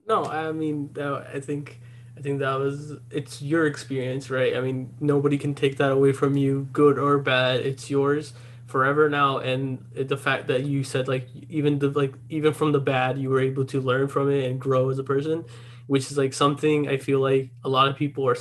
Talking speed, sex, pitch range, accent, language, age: 220 wpm, male, 130-145 Hz, American, English, 20-39